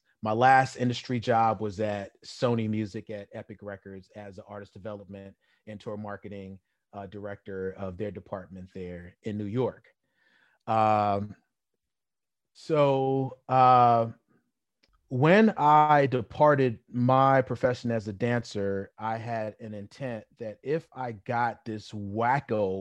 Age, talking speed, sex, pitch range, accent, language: 30-49, 125 wpm, male, 100-120 Hz, American, English